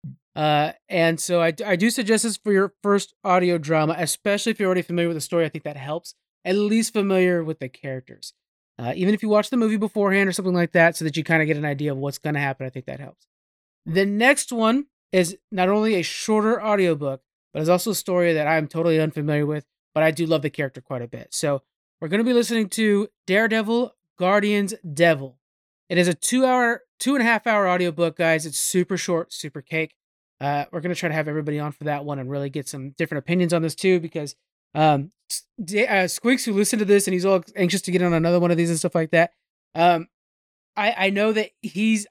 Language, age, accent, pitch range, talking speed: English, 30-49, American, 160-210 Hz, 225 wpm